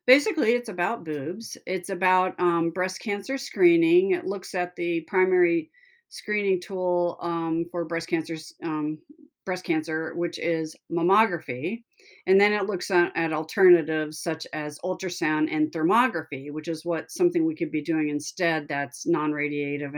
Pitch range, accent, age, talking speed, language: 155-185 Hz, American, 40-59, 145 wpm, English